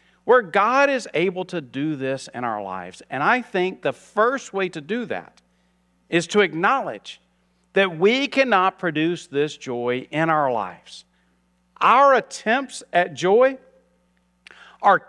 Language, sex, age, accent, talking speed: English, male, 50-69, American, 145 wpm